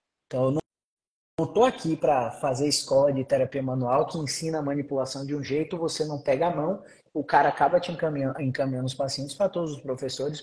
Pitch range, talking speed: 140-200 Hz, 200 wpm